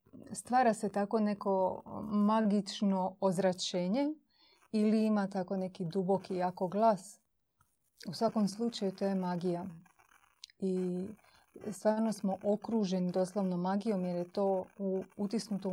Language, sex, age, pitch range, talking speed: Croatian, female, 30-49, 185-220 Hz, 110 wpm